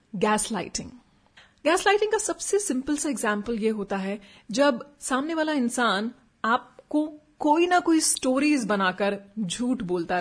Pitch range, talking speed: 210-285 Hz, 130 wpm